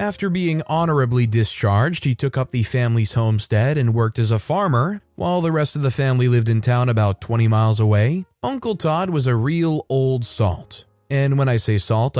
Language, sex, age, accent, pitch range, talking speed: English, male, 30-49, American, 115-155 Hz, 195 wpm